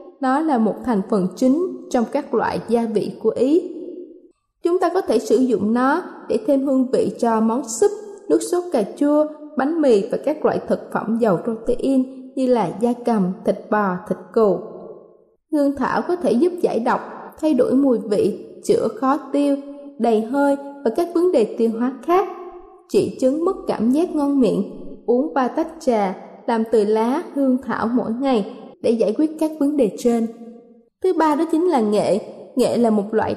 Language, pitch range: Vietnamese, 225-300 Hz